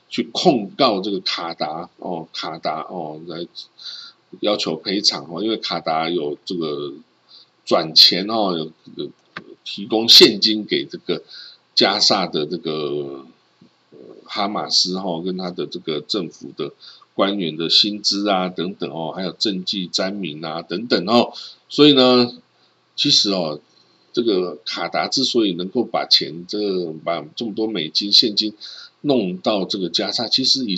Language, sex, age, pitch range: Chinese, male, 50-69, 95-130 Hz